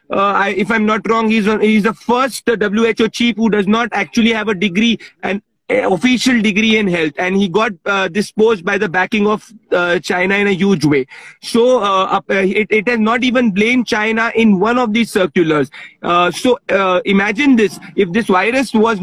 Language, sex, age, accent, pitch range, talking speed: Hindi, male, 40-59, native, 200-235 Hz, 210 wpm